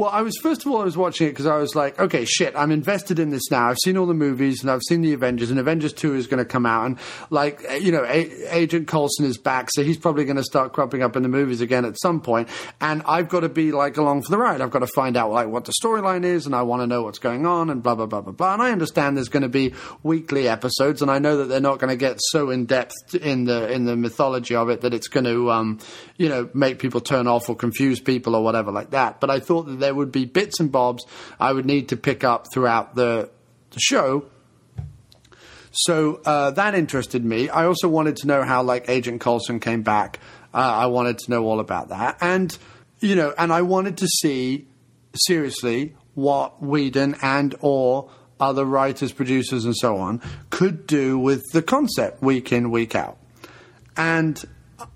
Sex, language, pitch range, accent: male, English, 125-160 Hz, British